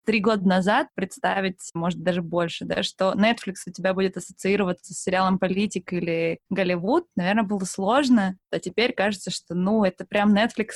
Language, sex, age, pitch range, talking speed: Russian, female, 20-39, 185-225 Hz, 165 wpm